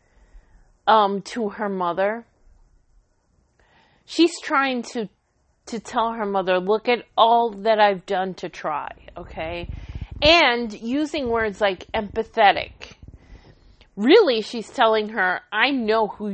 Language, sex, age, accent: English, female, 40-59, American